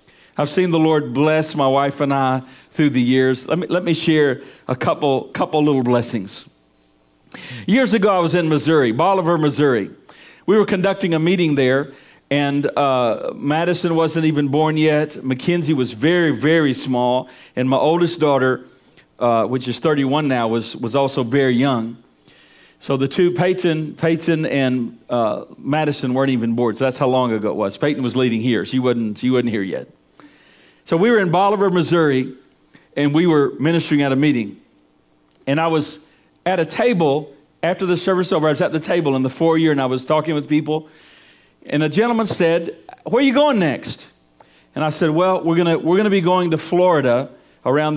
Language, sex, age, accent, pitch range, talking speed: English, male, 50-69, American, 125-165 Hz, 185 wpm